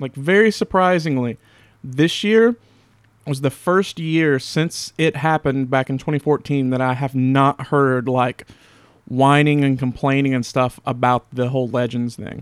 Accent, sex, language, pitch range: American, male, English, 125-160 Hz